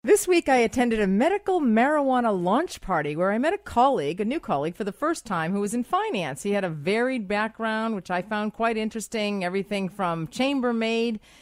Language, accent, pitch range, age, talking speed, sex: English, American, 180-260 Hz, 40-59, 200 wpm, female